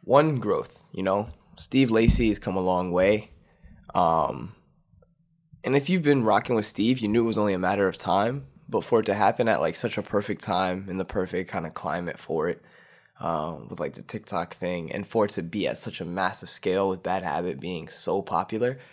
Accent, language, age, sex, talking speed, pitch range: American, English, 20-39, male, 220 wpm, 90-120 Hz